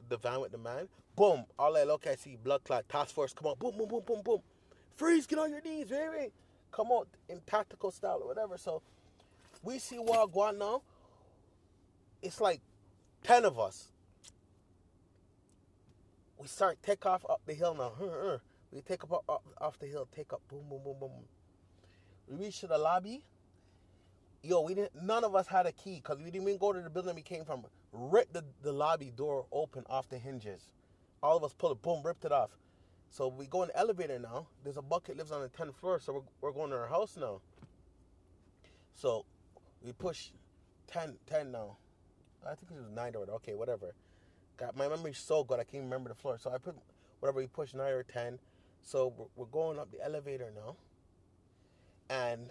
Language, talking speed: English, 205 wpm